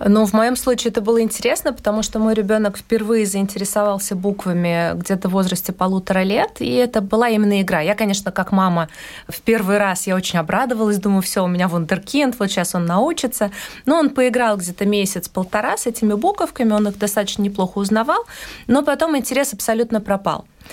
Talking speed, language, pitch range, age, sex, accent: 180 wpm, Russian, 190-230 Hz, 20-39, female, native